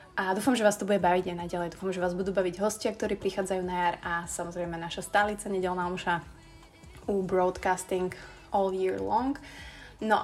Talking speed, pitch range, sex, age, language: 180 wpm, 185-210 Hz, female, 20-39, Slovak